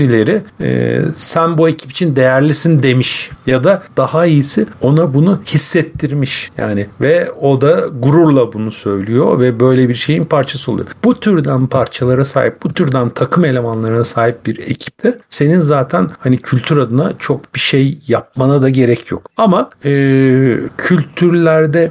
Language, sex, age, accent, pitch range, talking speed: Turkish, male, 50-69, native, 120-160 Hz, 150 wpm